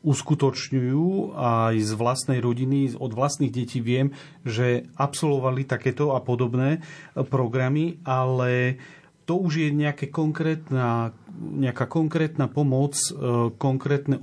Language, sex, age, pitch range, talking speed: Slovak, male, 40-59, 125-150 Hz, 100 wpm